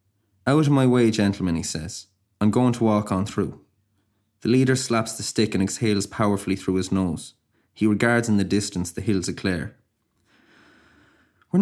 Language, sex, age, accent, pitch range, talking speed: English, male, 20-39, Irish, 100-120 Hz, 175 wpm